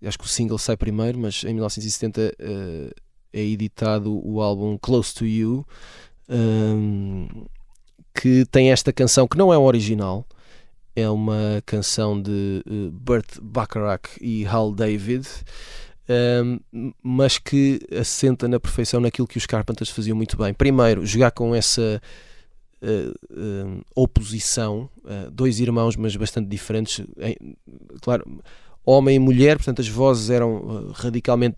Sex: male